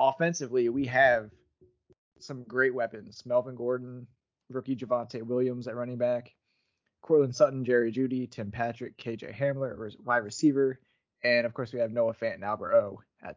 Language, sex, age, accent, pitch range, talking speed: English, male, 20-39, American, 120-135 Hz, 160 wpm